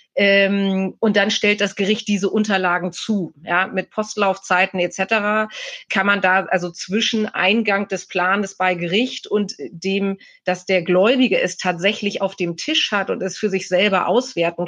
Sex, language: female, German